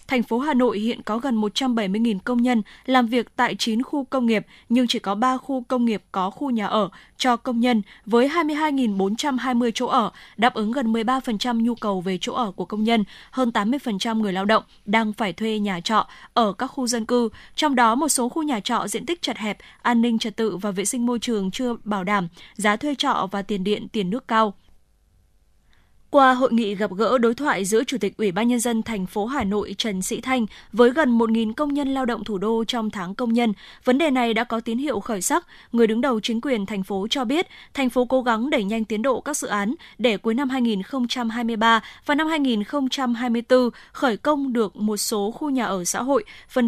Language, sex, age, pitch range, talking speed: Vietnamese, female, 10-29, 210-255 Hz, 225 wpm